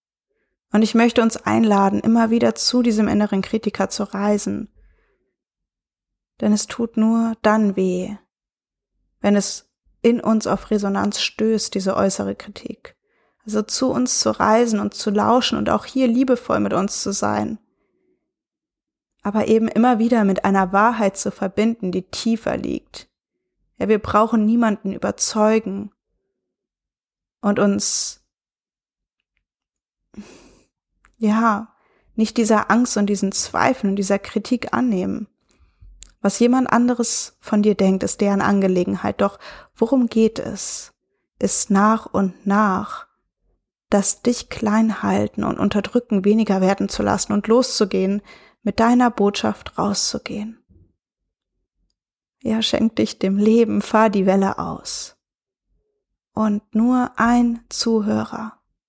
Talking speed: 125 wpm